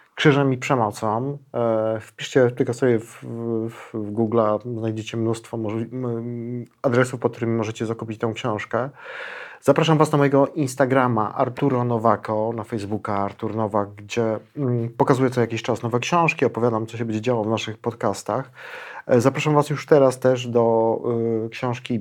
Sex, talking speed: male, 145 wpm